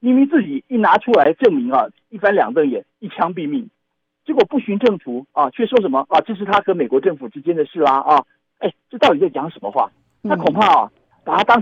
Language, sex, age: Chinese, male, 50-69